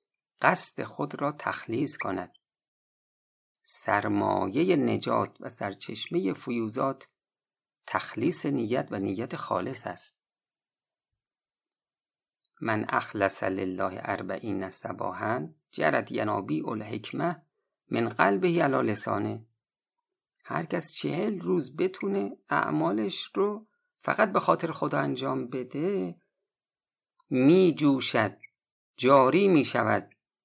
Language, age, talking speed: Persian, 50-69, 90 wpm